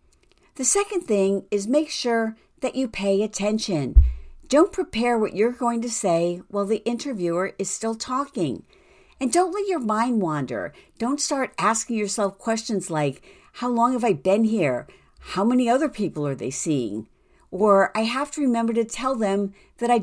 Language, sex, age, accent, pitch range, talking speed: English, female, 50-69, American, 185-260 Hz, 175 wpm